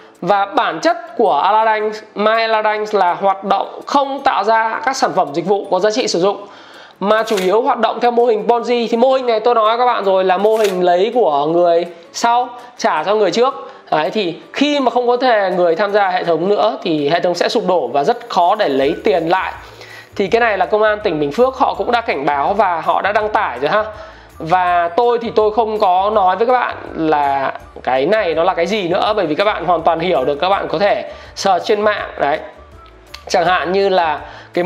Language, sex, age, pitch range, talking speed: Vietnamese, male, 20-39, 180-235 Hz, 240 wpm